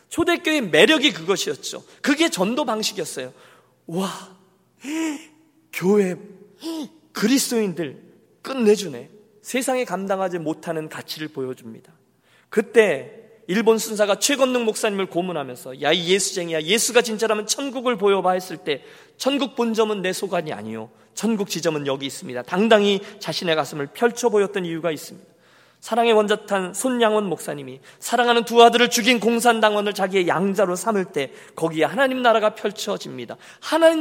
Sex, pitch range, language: male, 175-255 Hz, Korean